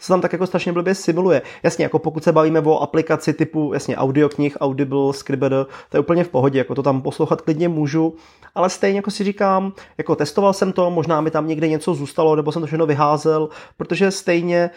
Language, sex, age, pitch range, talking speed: Czech, male, 30-49, 155-180 Hz, 210 wpm